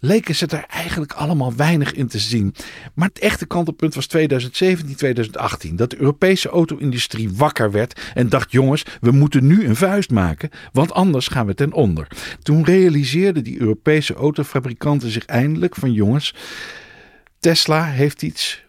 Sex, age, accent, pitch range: male, 50-69, Dutch, 115-170 Hz